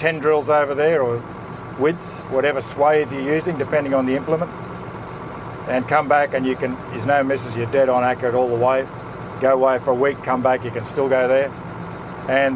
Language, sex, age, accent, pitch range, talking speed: English, male, 50-69, Australian, 125-145 Hz, 205 wpm